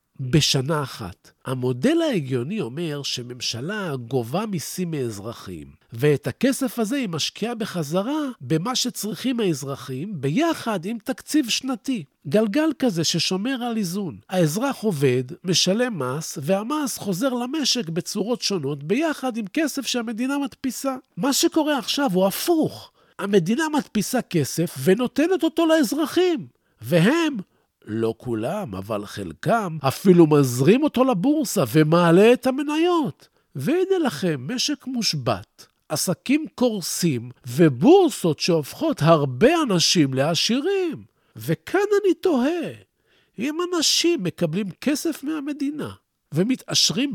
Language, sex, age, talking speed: Hebrew, male, 50-69, 105 wpm